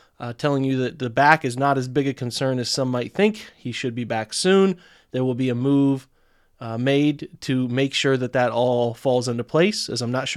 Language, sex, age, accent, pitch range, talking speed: English, male, 30-49, American, 130-155 Hz, 235 wpm